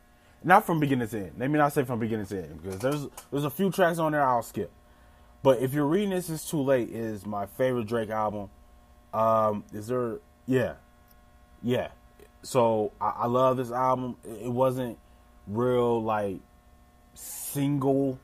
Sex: male